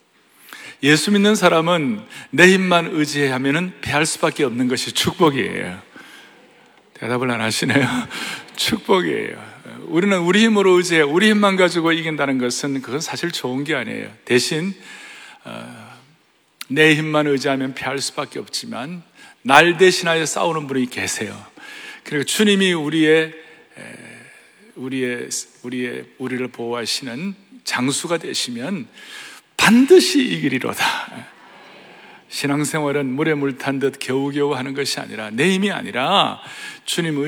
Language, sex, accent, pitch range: Korean, male, native, 135-195 Hz